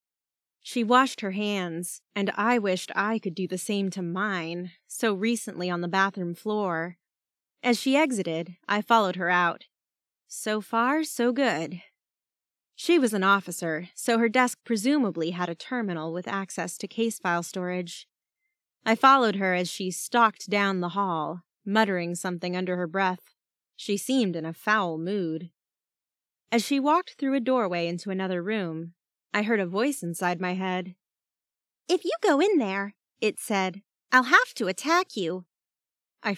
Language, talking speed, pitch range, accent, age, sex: English, 160 wpm, 180-255 Hz, American, 20-39, female